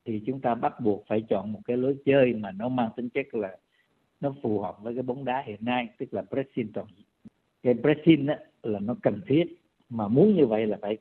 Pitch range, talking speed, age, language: 115-150 Hz, 225 wpm, 50-69, Vietnamese